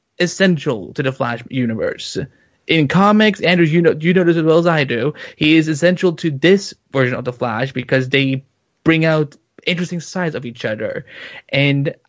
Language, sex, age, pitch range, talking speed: English, male, 20-39, 125-175 Hz, 185 wpm